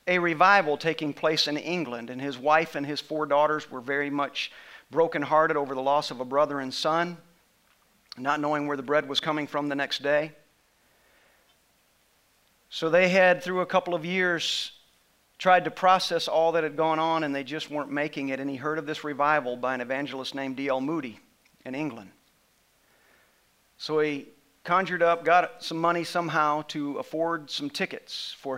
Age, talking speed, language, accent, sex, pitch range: 40-59, 180 wpm, English, American, male, 140-170 Hz